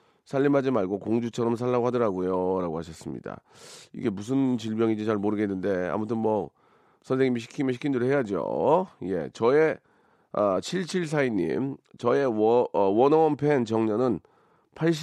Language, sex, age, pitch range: Korean, male, 40-59, 105-140 Hz